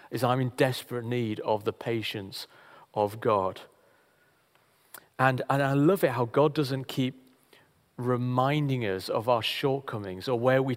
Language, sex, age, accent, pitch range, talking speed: English, male, 40-59, British, 110-135 Hz, 150 wpm